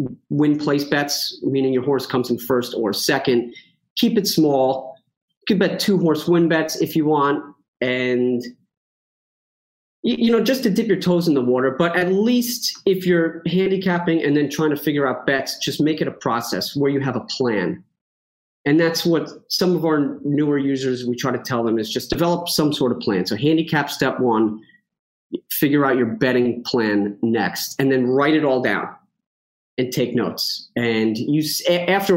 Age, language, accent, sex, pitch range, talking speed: 30-49, English, American, male, 125-170 Hz, 185 wpm